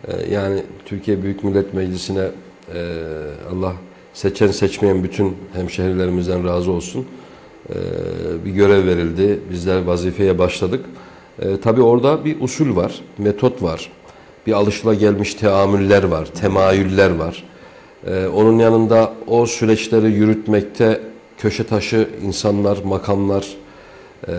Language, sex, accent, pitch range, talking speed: Turkish, male, native, 90-110 Hz, 100 wpm